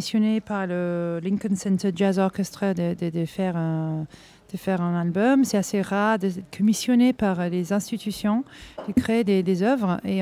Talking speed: 170 wpm